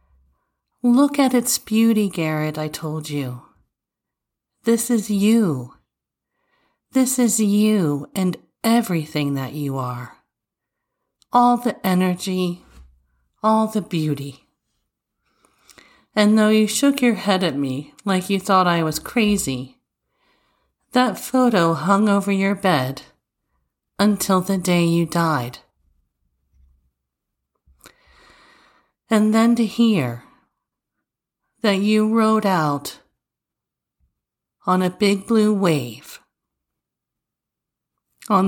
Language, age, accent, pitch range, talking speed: English, 50-69, American, 130-210 Hz, 100 wpm